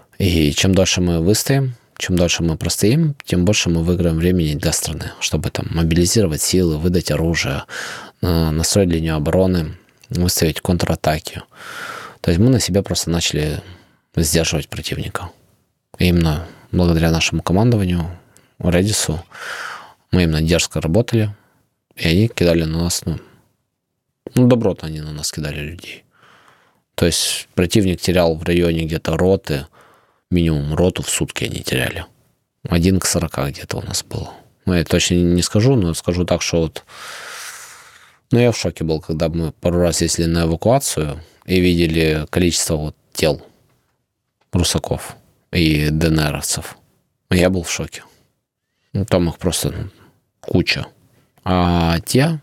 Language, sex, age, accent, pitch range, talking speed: Ukrainian, male, 20-39, native, 80-95 Hz, 135 wpm